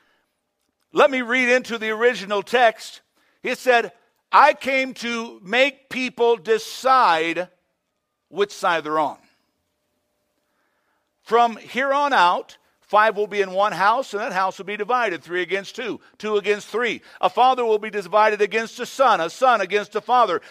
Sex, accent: male, American